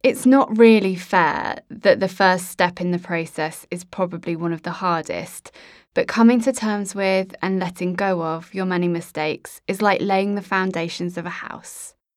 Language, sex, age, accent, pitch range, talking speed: English, female, 20-39, British, 175-215 Hz, 185 wpm